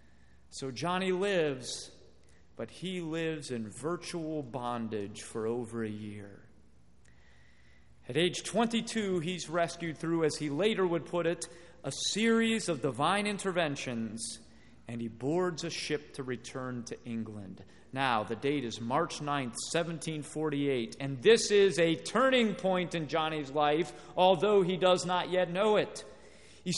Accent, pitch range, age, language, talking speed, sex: American, 130-190 Hz, 40-59, English, 140 wpm, male